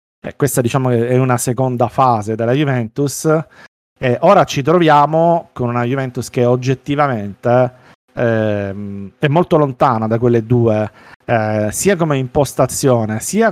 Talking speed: 130 wpm